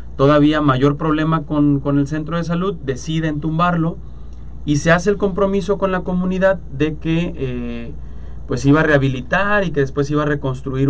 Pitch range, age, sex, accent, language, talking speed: 120-150 Hz, 30-49, male, Mexican, Spanish, 175 wpm